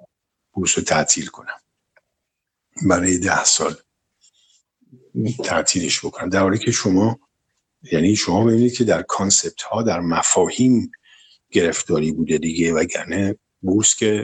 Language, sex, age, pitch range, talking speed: Persian, male, 50-69, 95-125 Hz, 115 wpm